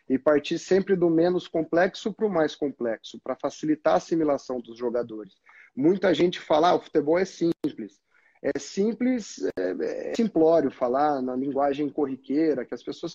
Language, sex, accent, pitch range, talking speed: Portuguese, male, Brazilian, 140-180 Hz, 165 wpm